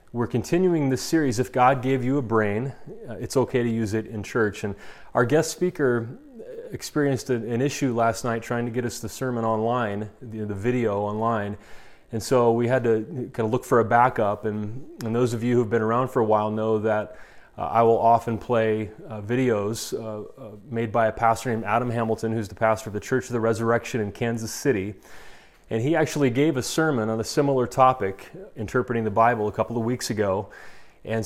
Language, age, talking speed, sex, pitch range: English, 30-49, 210 wpm, male, 110-125 Hz